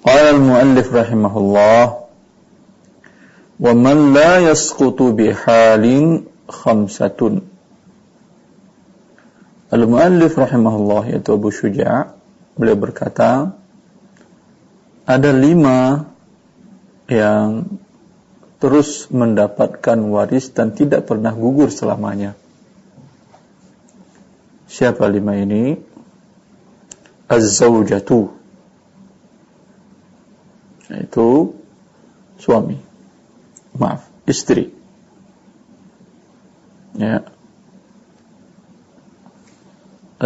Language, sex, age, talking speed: Indonesian, male, 50-69, 50 wpm